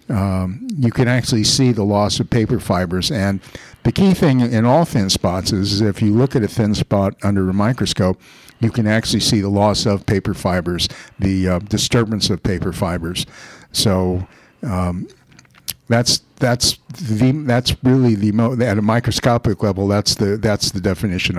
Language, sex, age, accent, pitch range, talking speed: English, male, 50-69, American, 95-115 Hz, 175 wpm